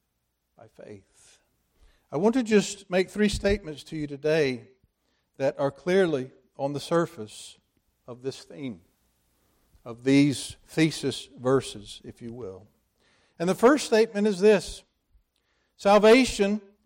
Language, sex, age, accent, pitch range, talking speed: English, male, 50-69, American, 140-210 Hz, 125 wpm